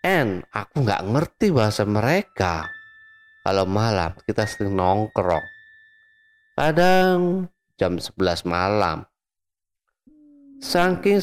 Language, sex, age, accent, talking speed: Indonesian, male, 30-49, native, 85 wpm